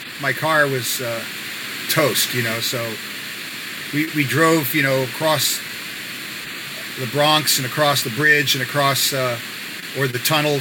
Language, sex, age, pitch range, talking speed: English, male, 40-59, 130-150 Hz, 145 wpm